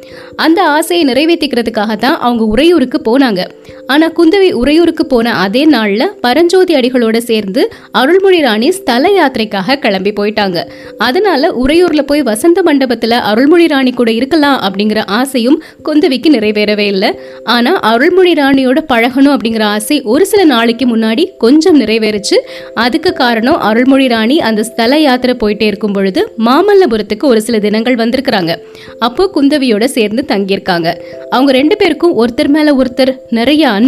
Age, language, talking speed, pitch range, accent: 20-39, Tamil, 80 wpm, 220-310 Hz, native